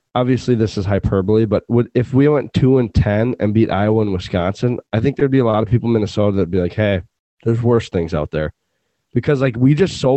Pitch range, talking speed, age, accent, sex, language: 95-125 Hz, 235 wpm, 20-39, American, male, English